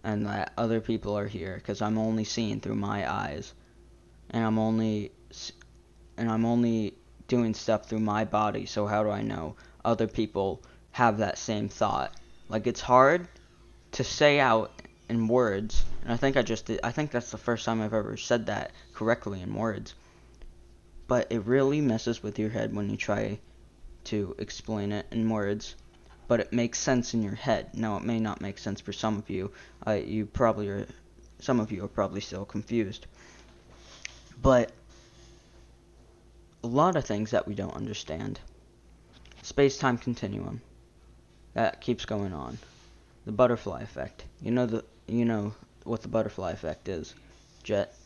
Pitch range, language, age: 105-120 Hz, English, 10-29